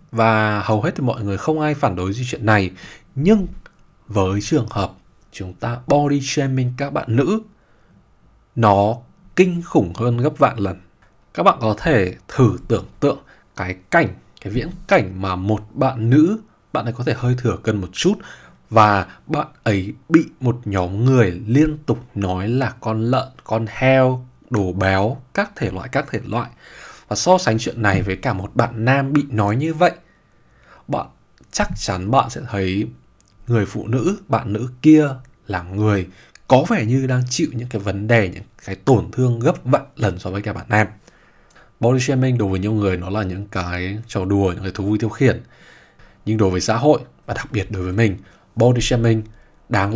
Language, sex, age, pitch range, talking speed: Vietnamese, male, 20-39, 100-135 Hz, 190 wpm